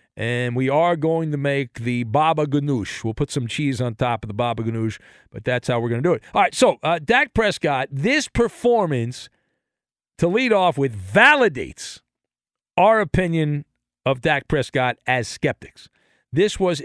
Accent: American